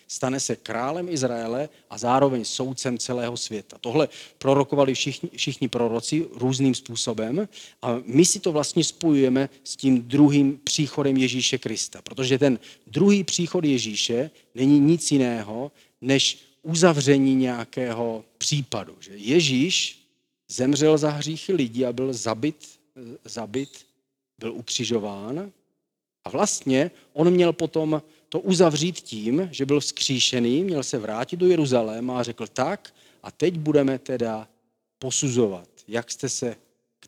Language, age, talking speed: Czech, 40-59, 130 wpm